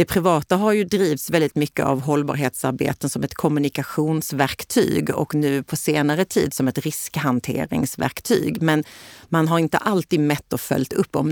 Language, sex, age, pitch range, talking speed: Swedish, female, 40-59, 140-165 Hz, 160 wpm